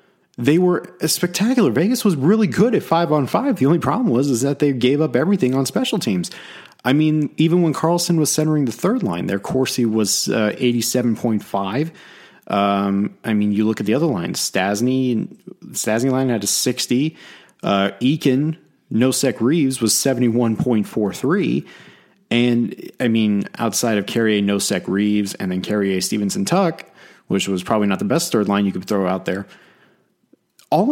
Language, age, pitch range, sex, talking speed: English, 30-49, 100-140 Hz, male, 160 wpm